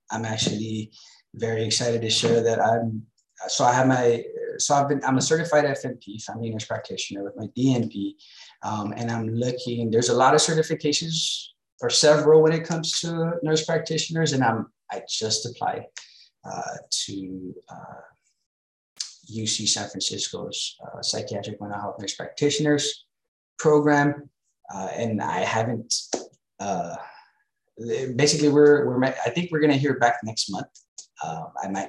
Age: 20-39